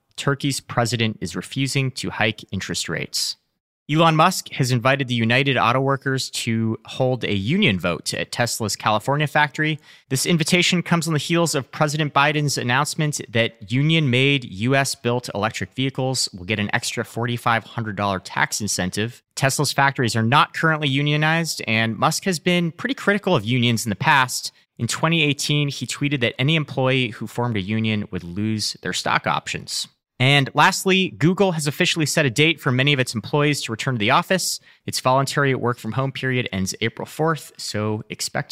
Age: 30-49